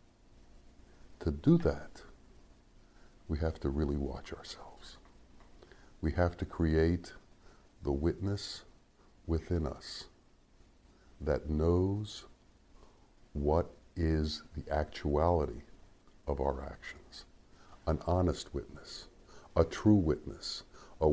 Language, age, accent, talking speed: English, 60-79, American, 95 wpm